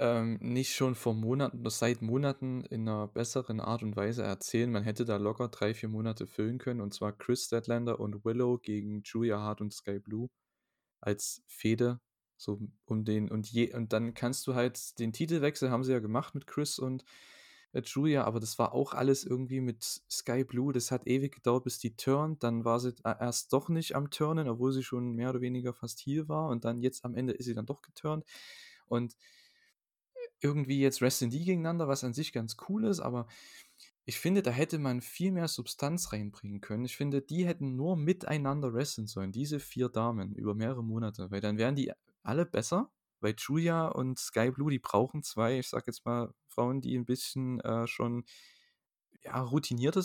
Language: German